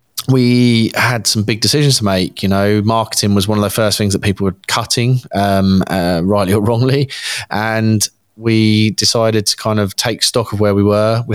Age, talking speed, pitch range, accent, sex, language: 20-39, 200 wpm, 100-110 Hz, British, male, English